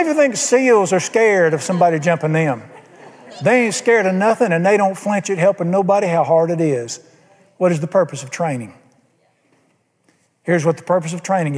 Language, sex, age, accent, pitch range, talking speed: English, male, 50-69, American, 165-215 Hz, 185 wpm